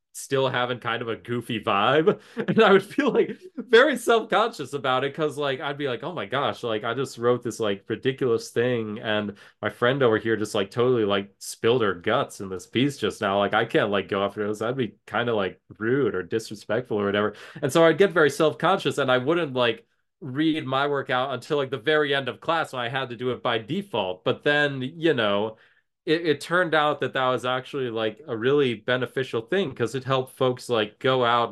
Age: 20-39